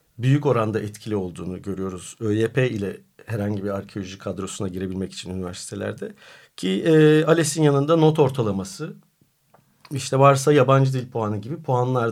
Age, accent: 50-69, native